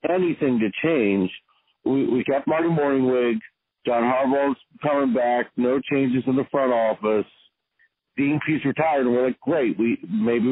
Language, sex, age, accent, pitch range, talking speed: English, male, 50-69, American, 120-145 Hz, 155 wpm